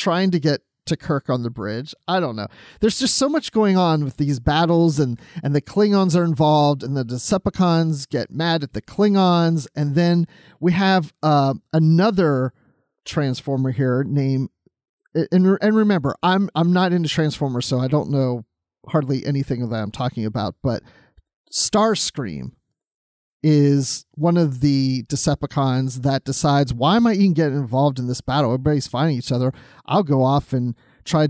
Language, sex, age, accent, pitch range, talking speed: English, male, 40-59, American, 135-175 Hz, 170 wpm